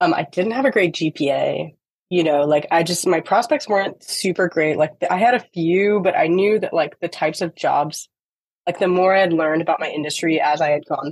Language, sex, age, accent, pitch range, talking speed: English, female, 20-39, American, 155-190 Hz, 235 wpm